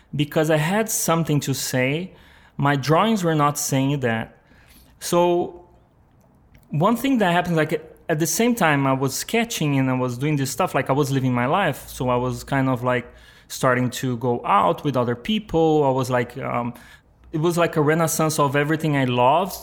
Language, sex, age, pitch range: English, male, 20-39, 130-165 Hz